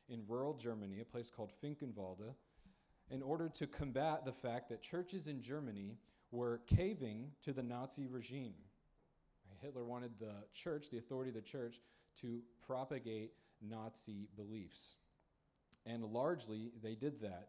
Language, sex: English, male